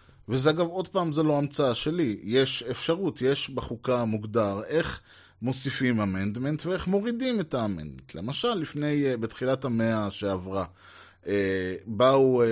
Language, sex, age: Hebrew, male, 20-39